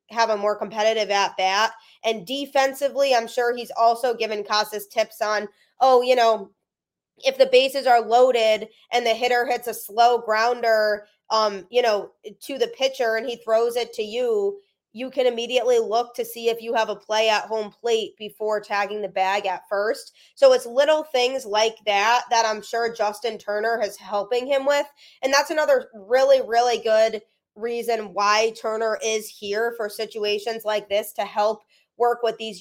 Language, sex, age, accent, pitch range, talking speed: English, female, 20-39, American, 215-245 Hz, 180 wpm